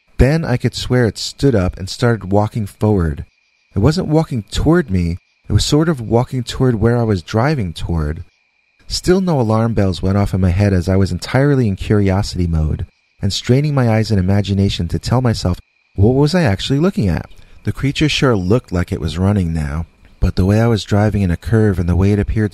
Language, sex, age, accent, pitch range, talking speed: English, male, 30-49, American, 90-115 Hz, 215 wpm